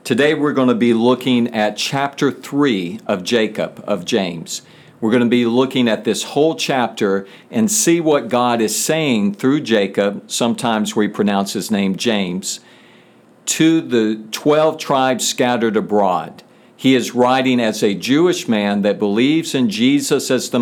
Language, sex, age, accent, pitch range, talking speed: English, male, 50-69, American, 110-145 Hz, 160 wpm